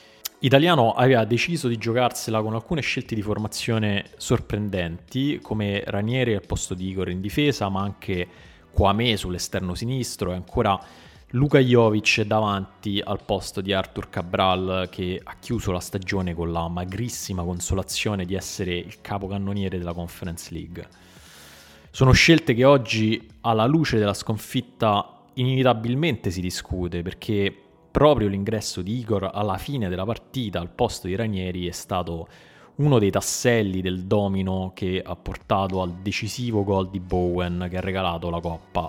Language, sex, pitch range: Italian, male, 90-110 Hz